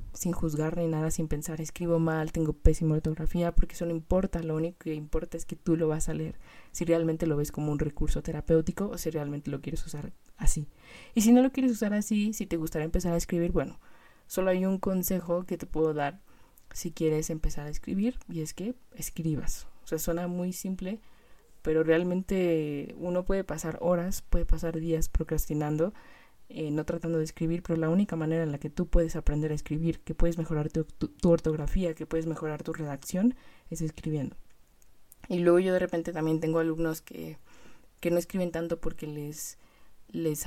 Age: 20-39